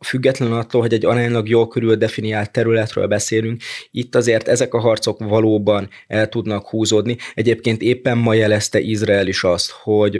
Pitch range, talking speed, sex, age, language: 105-115 Hz, 160 wpm, male, 20-39, Hungarian